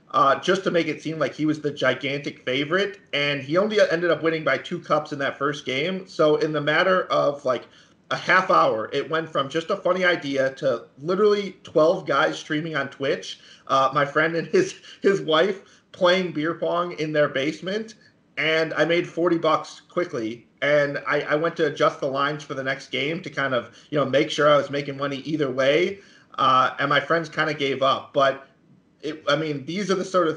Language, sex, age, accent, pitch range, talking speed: English, male, 30-49, American, 140-165 Hz, 215 wpm